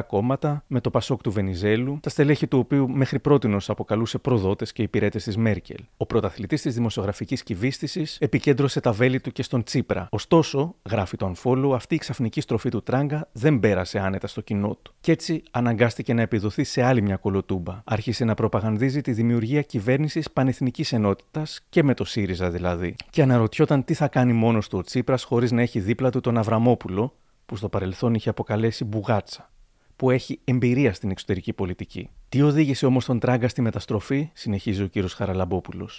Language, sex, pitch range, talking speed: Greek, male, 105-135 Hz, 180 wpm